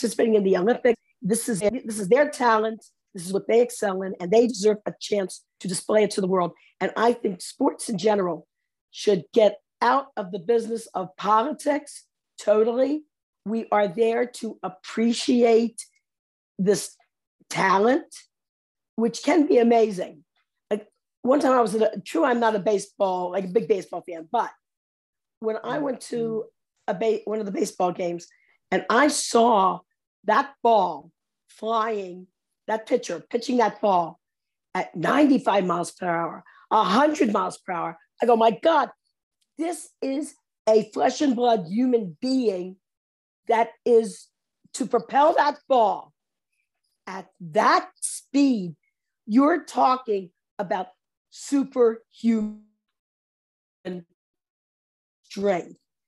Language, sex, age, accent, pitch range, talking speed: English, female, 50-69, American, 205-250 Hz, 135 wpm